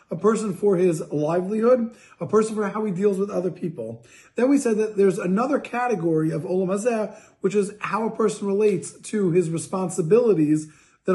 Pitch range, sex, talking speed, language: 175-205 Hz, male, 180 wpm, English